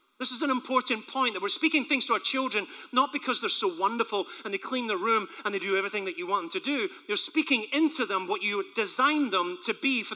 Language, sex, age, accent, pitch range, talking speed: English, male, 30-49, British, 215-275 Hz, 255 wpm